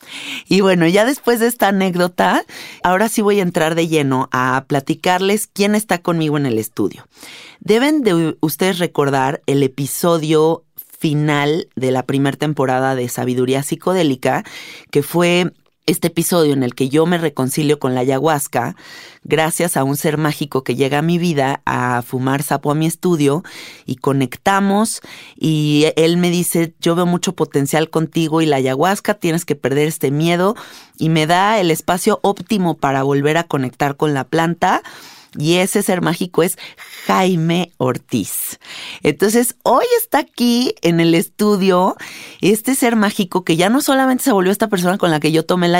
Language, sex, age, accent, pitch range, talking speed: Spanish, female, 30-49, Mexican, 150-190 Hz, 170 wpm